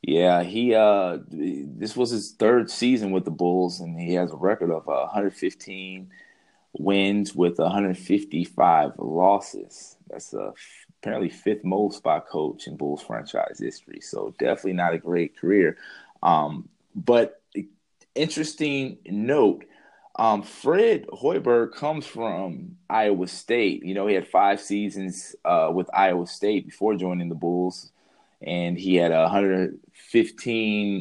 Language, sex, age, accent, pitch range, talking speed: English, male, 30-49, American, 90-125 Hz, 135 wpm